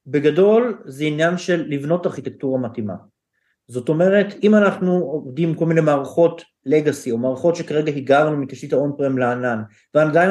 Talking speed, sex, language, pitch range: 145 wpm, male, Hebrew, 140-195 Hz